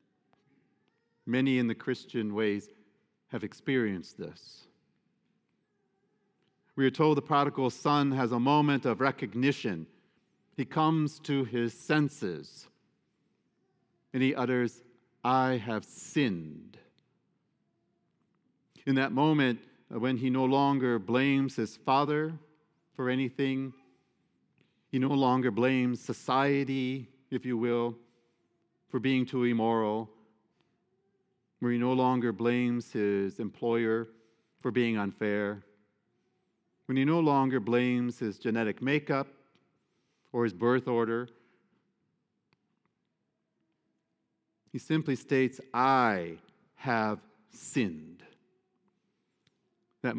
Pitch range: 115-140 Hz